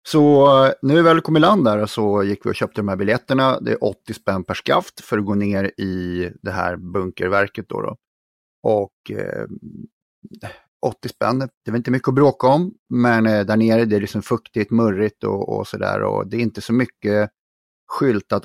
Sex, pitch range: male, 100-135 Hz